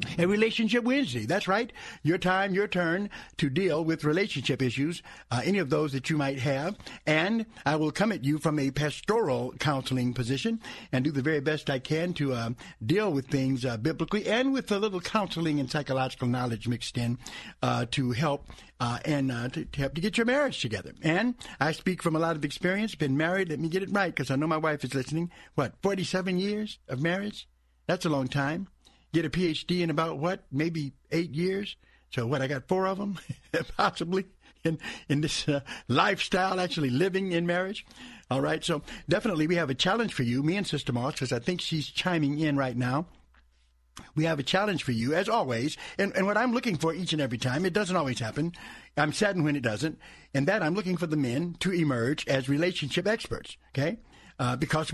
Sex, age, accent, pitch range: male, 60-79, American, 135-185 Hz